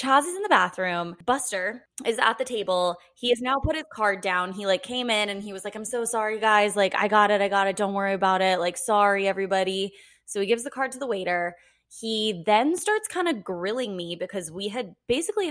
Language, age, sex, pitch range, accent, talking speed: English, 20-39, female, 175-225 Hz, American, 240 wpm